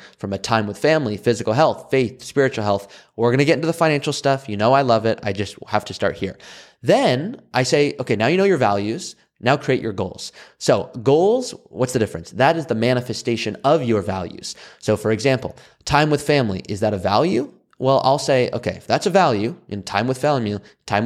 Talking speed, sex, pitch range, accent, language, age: 220 wpm, male, 105-145 Hz, American, English, 30-49